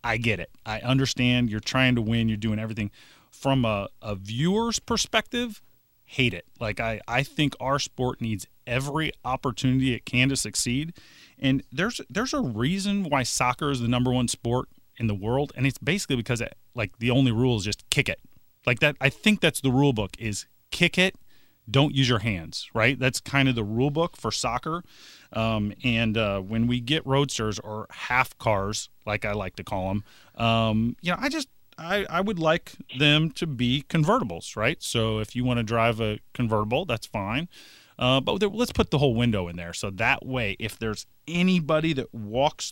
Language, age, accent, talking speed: English, 30-49, American, 200 wpm